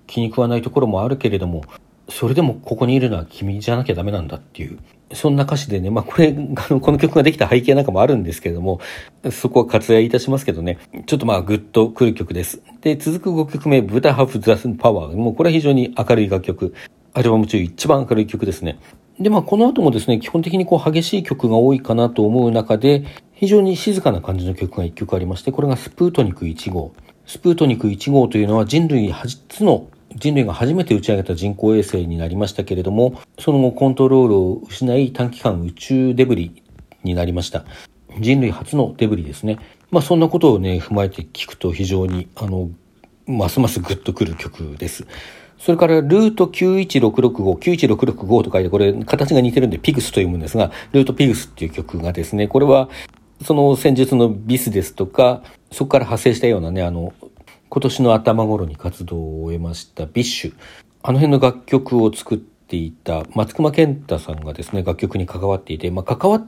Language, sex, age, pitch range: Japanese, male, 40-59, 95-135 Hz